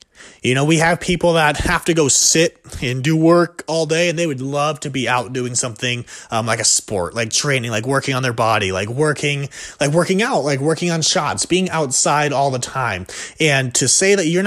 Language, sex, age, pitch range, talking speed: English, male, 30-49, 135-185 Hz, 225 wpm